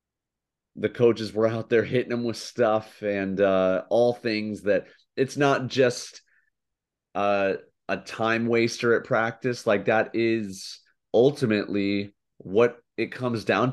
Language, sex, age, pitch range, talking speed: English, male, 30-49, 95-120 Hz, 135 wpm